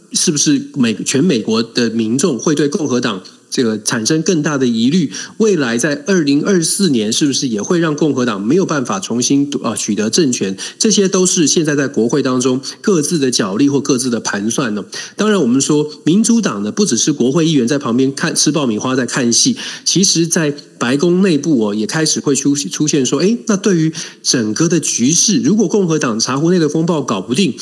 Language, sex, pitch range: Chinese, male, 130-185 Hz